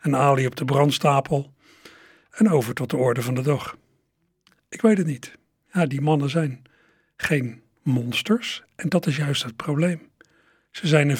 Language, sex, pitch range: Dutch, male, 125-165 Hz